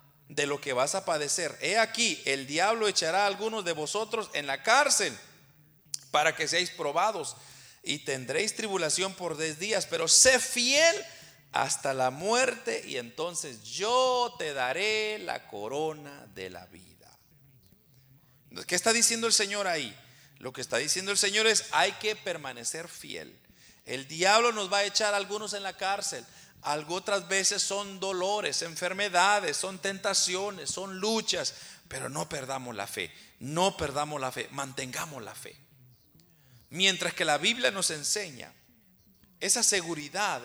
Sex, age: male, 40-59